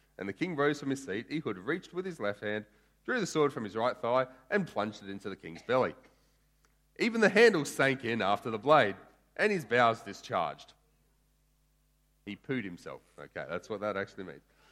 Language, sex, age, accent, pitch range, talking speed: English, male, 30-49, Australian, 130-205 Hz, 195 wpm